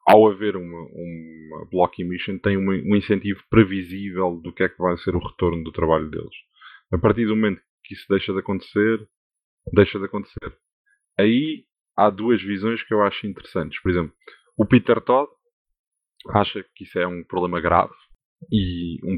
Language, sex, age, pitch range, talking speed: Portuguese, male, 20-39, 90-105 Hz, 170 wpm